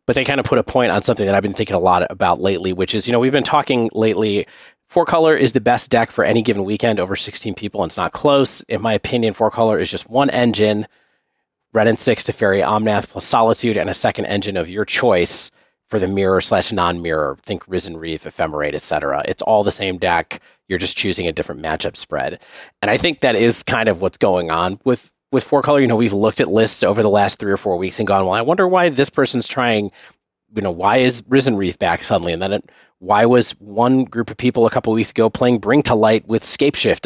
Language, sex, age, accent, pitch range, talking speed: English, male, 30-49, American, 100-125 Hz, 240 wpm